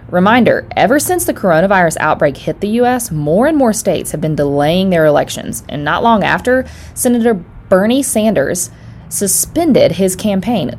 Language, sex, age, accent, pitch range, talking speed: English, female, 20-39, American, 150-225 Hz, 155 wpm